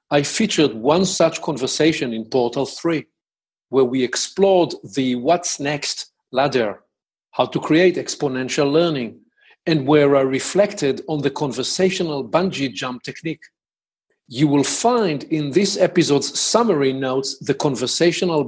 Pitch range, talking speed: 135-175 Hz, 130 wpm